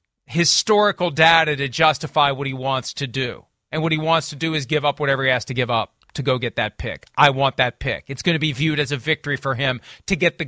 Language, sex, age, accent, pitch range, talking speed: English, male, 40-59, American, 145-205 Hz, 265 wpm